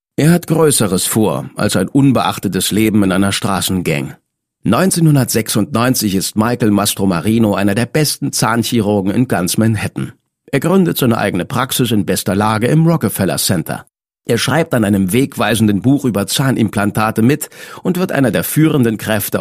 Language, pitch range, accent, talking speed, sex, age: German, 105-140 Hz, German, 150 wpm, male, 50-69